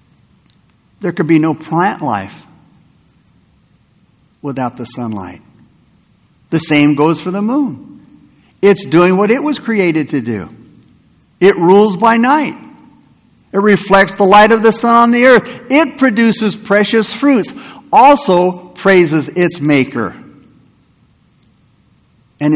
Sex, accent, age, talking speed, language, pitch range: male, American, 60-79, 120 wpm, English, 155-225 Hz